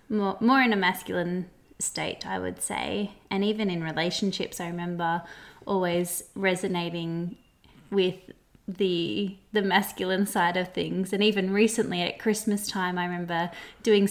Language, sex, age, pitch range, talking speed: English, female, 20-39, 180-230 Hz, 140 wpm